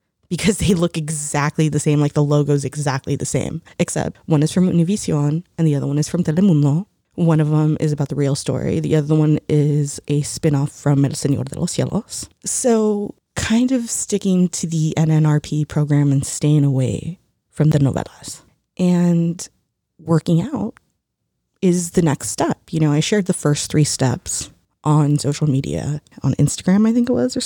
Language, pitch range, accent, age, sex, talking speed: English, 145-180 Hz, American, 20-39, female, 180 wpm